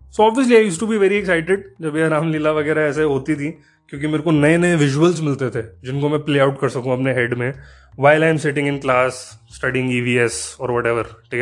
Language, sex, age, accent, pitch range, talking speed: Hindi, male, 20-39, native, 130-165 Hz, 220 wpm